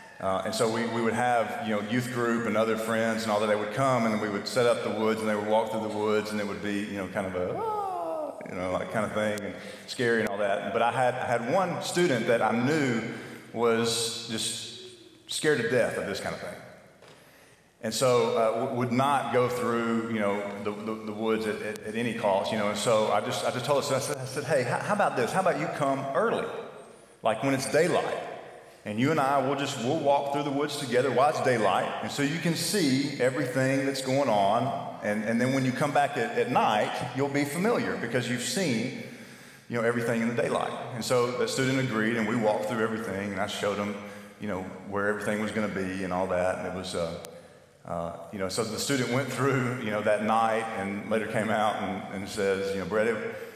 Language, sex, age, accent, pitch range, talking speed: English, male, 40-59, American, 105-130 Hz, 245 wpm